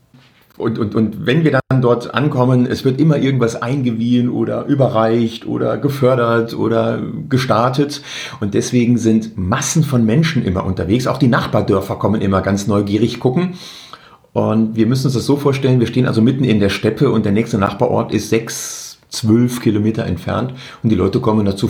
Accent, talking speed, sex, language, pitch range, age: German, 175 wpm, male, German, 115-150 Hz, 40-59